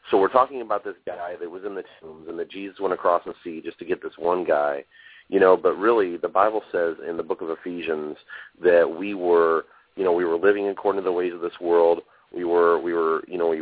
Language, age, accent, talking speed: English, 40-59, American, 255 wpm